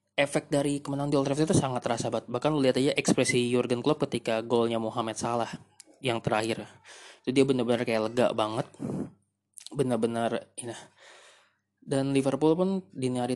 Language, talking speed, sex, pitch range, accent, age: Indonesian, 160 wpm, male, 120-140 Hz, native, 20-39